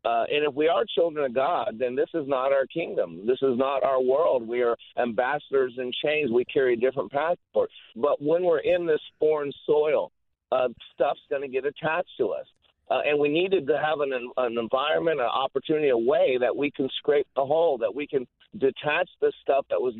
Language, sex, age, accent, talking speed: English, male, 50-69, American, 210 wpm